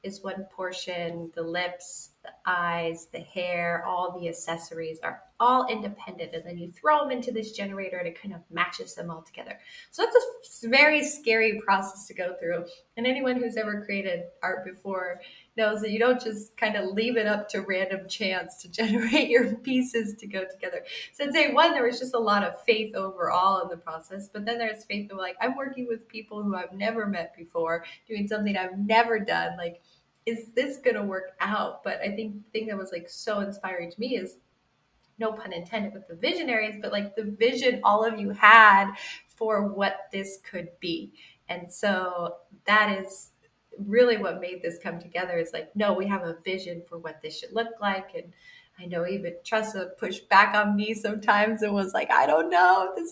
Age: 20-39